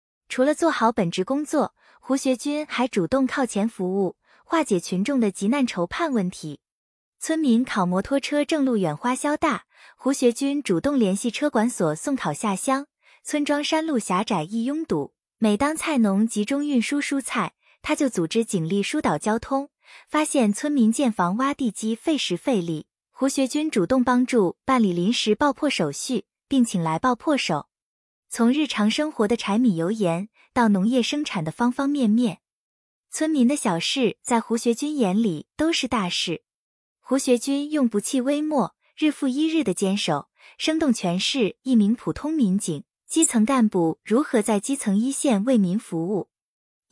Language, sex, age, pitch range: Chinese, female, 20-39, 205-285 Hz